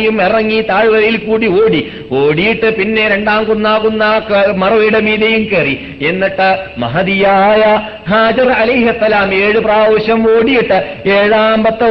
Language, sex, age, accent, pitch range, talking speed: Malayalam, male, 50-69, native, 190-220 Hz, 100 wpm